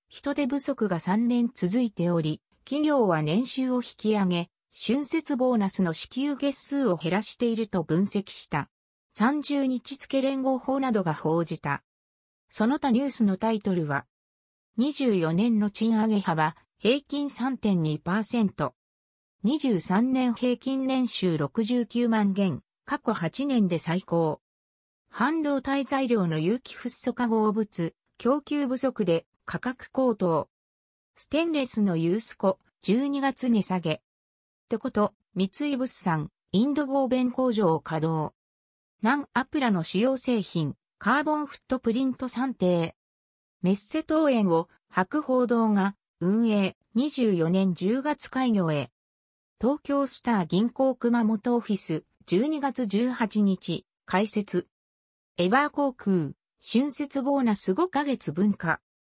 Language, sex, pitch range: Japanese, female, 175-260 Hz